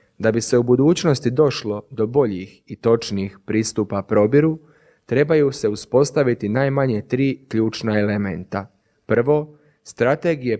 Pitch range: 105-140 Hz